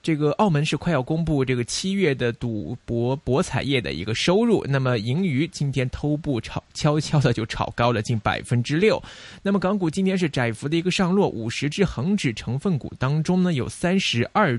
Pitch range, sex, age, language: 120-170 Hz, male, 20-39, Chinese